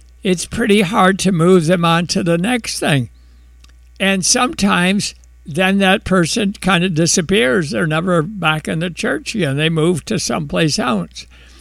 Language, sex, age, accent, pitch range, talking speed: English, male, 60-79, American, 160-200 Hz, 160 wpm